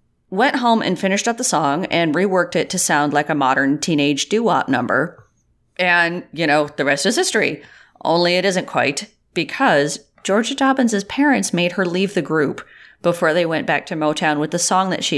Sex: female